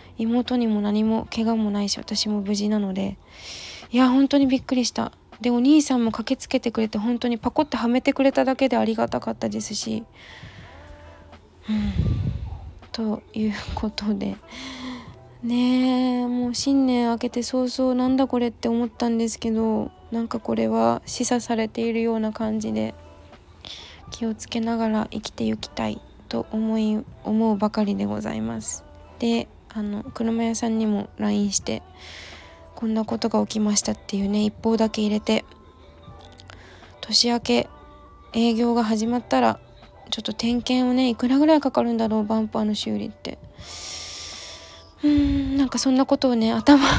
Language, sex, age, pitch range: Japanese, female, 20-39, 190-245 Hz